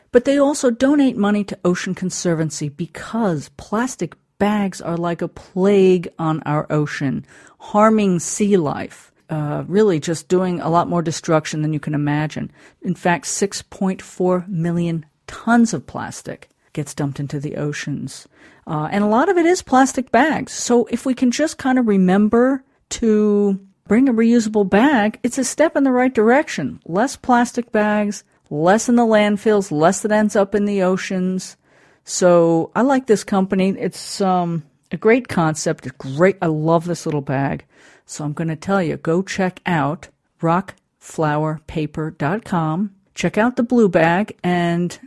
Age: 50-69